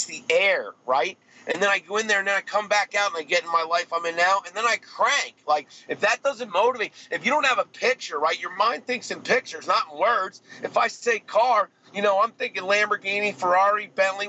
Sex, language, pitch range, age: male, English, 160-210 Hz, 40-59